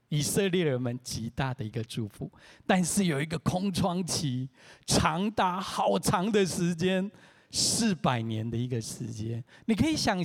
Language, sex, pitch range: Chinese, male, 125-180 Hz